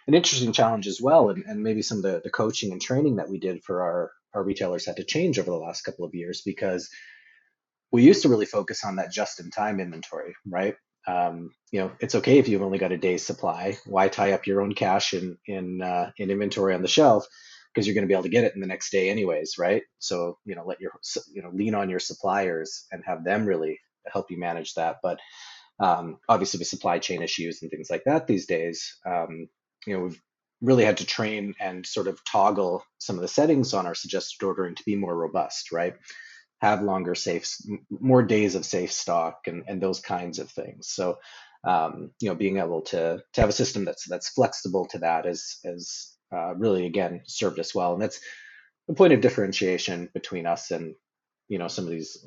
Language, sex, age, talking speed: English, male, 30-49, 220 wpm